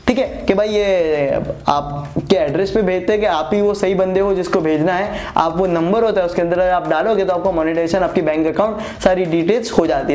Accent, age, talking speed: native, 20-39, 235 wpm